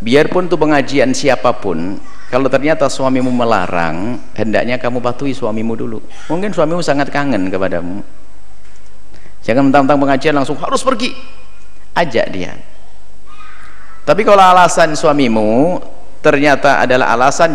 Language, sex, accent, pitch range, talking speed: Indonesian, male, native, 125-175 Hz, 115 wpm